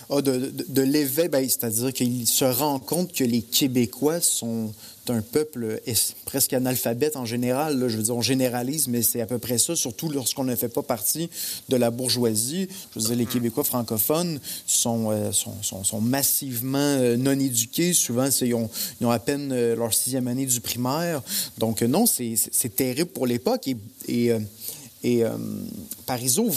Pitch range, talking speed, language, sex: 115-145 Hz, 185 wpm, English, male